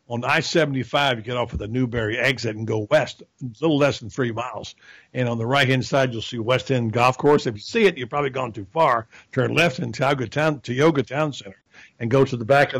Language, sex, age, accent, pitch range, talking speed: English, male, 60-79, American, 120-155 Hz, 235 wpm